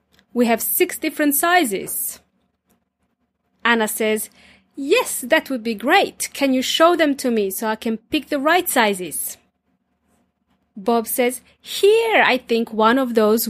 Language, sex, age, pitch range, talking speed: English, female, 30-49, 230-315 Hz, 145 wpm